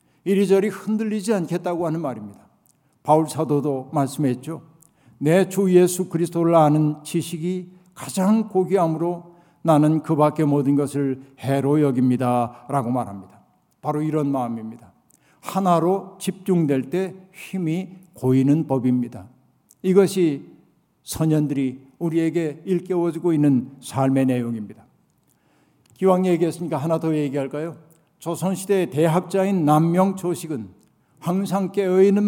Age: 60-79